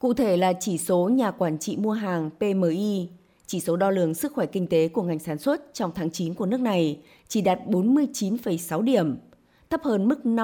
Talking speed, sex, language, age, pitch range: 205 wpm, female, Vietnamese, 20-39, 170-245 Hz